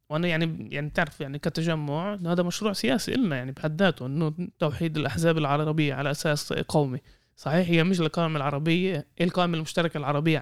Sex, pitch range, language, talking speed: male, 145-175 Hz, Arabic, 155 wpm